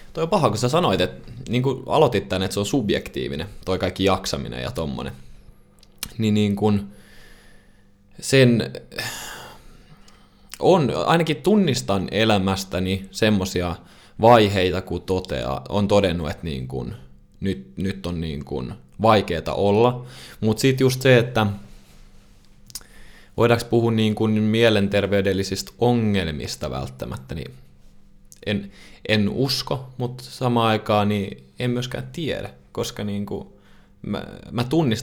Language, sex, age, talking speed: Finnish, male, 20-39, 115 wpm